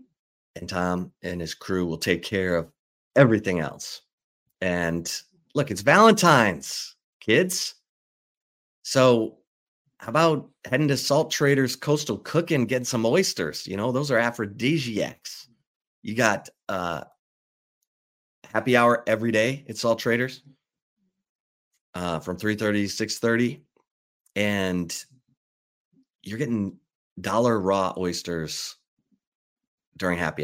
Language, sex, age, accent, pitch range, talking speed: English, male, 30-49, American, 90-120 Hz, 110 wpm